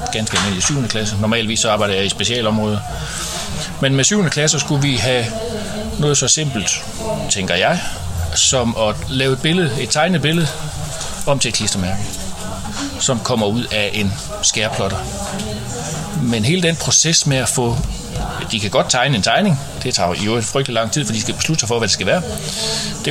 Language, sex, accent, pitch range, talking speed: Danish, male, native, 100-150 Hz, 185 wpm